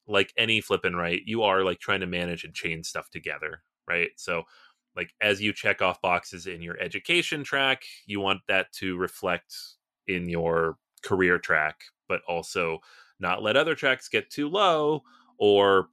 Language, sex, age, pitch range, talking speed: English, male, 30-49, 90-130 Hz, 170 wpm